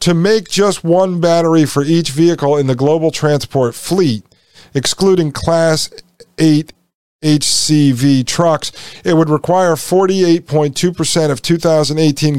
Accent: American